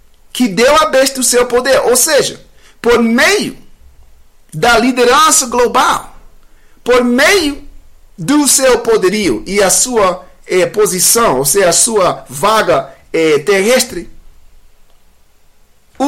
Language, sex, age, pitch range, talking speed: English, male, 50-69, 210-300 Hz, 110 wpm